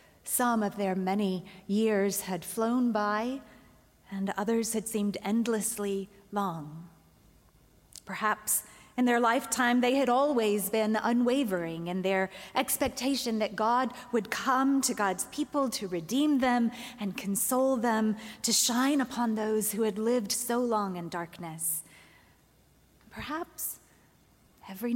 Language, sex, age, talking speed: English, female, 30-49, 125 wpm